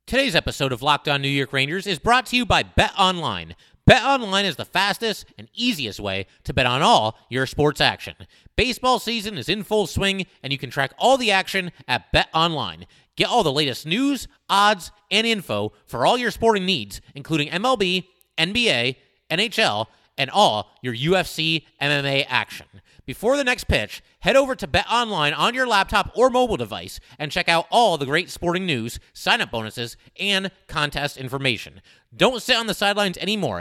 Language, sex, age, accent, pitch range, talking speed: English, male, 30-49, American, 130-210 Hz, 180 wpm